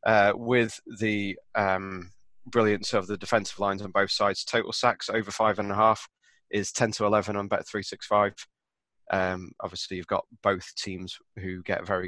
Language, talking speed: English, 165 wpm